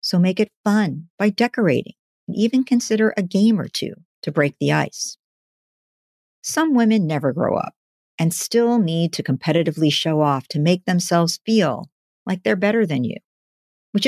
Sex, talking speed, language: female, 165 wpm, English